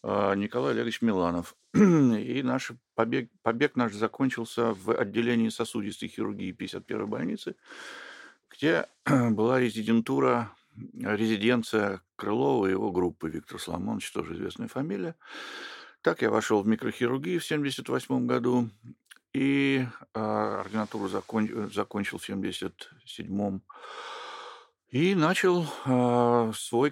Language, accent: Russian, native